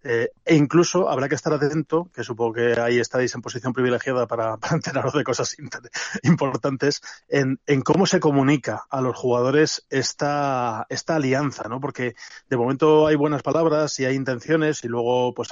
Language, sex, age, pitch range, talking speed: Spanish, male, 20-39, 125-150 Hz, 180 wpm